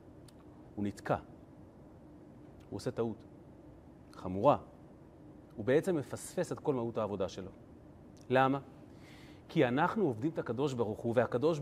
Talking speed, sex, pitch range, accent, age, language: 120 wpm, male, 120-160 Hz, native, 30-49, Hebrew